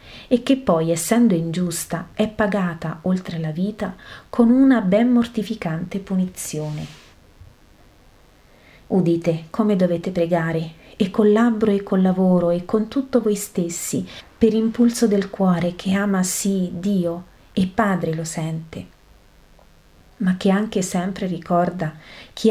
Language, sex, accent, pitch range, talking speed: Italian, female, native, 165-210 Hz, 130 wpm